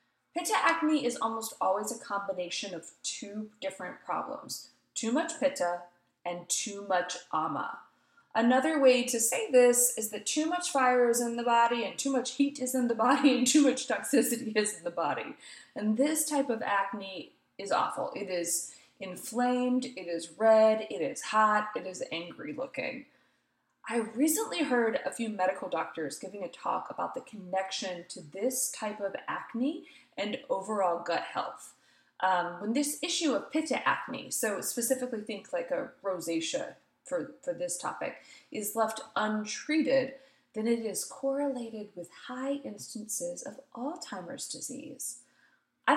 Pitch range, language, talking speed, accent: 200-275 Hz, English, 160 wpm, American